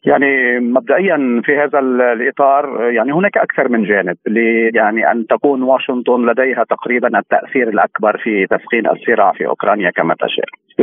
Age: 40-59